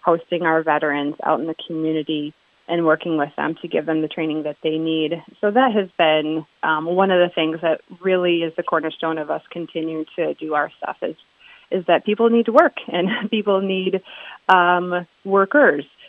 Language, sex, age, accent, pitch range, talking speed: English, female, 30-49, American, 160-200 Hz, 195 wpm